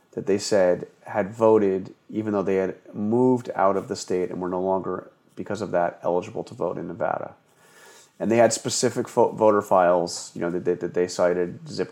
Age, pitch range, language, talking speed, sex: 30-49, 95-125 Hz, English, 205 wpm, male